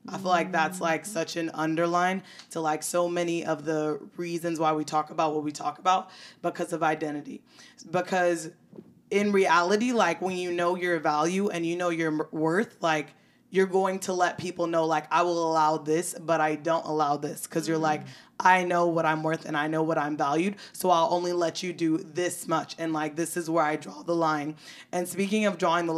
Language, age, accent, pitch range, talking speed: English, 20-39, American, 160-190 Hz, 215 wpm